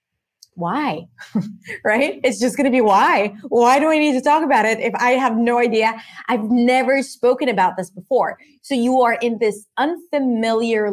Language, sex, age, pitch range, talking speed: English, female, 30-49, 195-280 Hz, 180 wpm